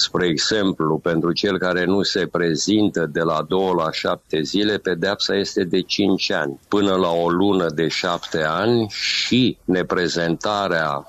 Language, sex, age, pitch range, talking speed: Romanian, male, 50-69, 80-95 Hz, 150 wpm